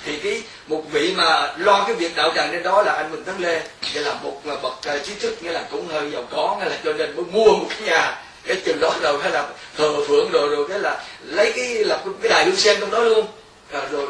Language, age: Vietnamese, 20-39